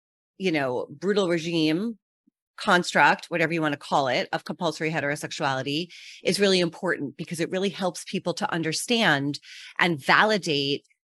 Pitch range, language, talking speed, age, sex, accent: 150-210 Hz, English, 140 wpm, 30-49, female, American